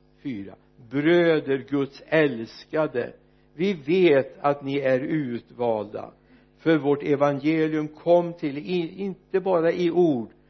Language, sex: Swedish, male